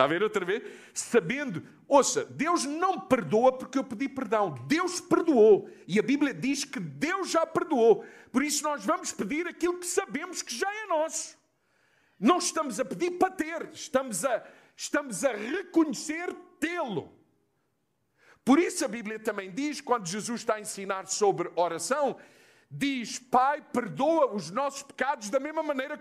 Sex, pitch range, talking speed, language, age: male, 270-360 Hz, 160 wpm, Portuguese, 50-69